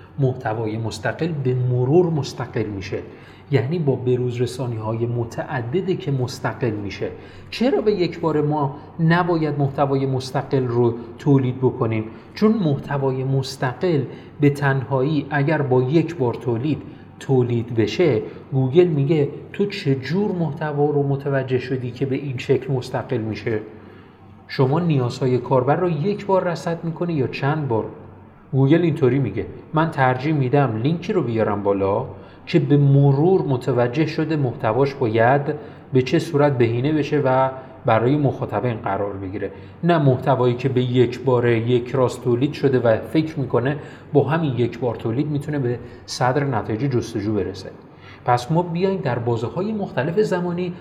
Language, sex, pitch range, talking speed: Persian, male, 120-150 Hz, 145 wpm